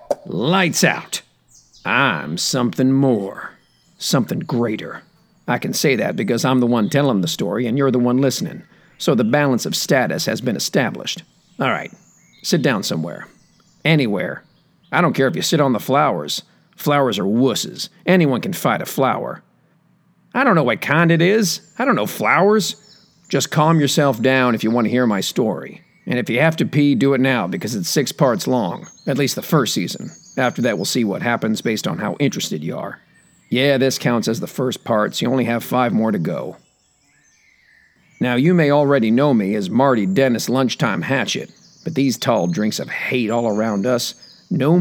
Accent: American